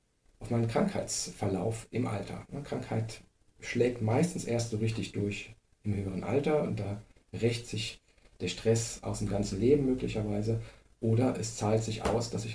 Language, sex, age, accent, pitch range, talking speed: German, male, 40-59, German, 105-120 Hz, 160 wpm